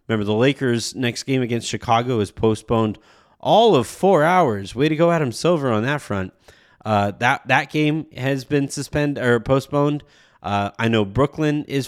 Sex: male